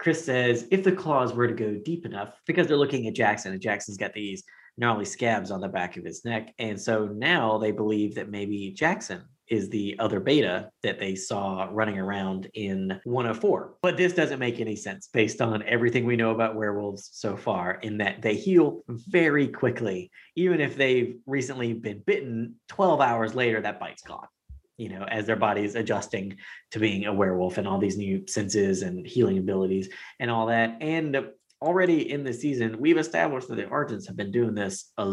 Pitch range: 100-125 Hz